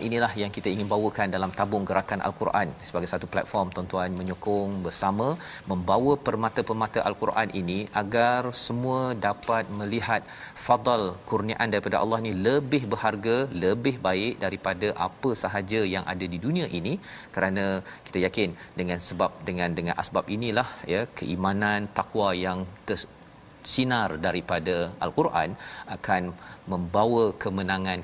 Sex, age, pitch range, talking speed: male, 40-59, 95-115 Hz, 130 wpm